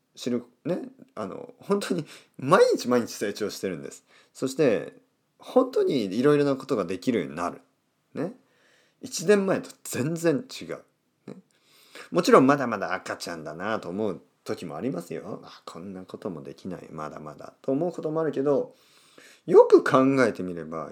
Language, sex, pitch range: Japanese, male, 105-155 Hz